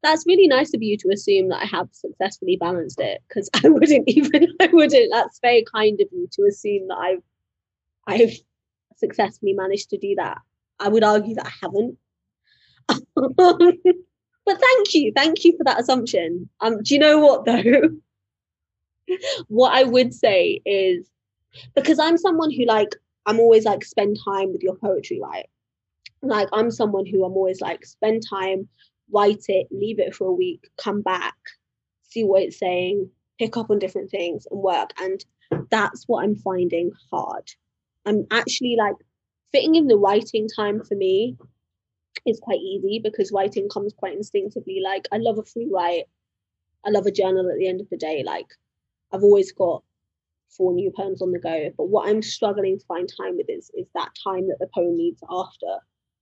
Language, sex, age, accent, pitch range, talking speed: English, female, 20-39, British, 190-285 Hz, 180 wpm